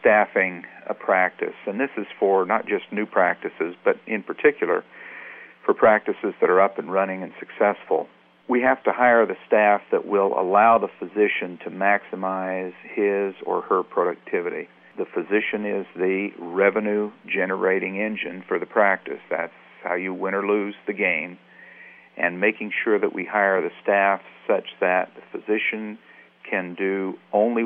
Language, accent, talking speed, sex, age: English, American, 160 wpm, male, 50-69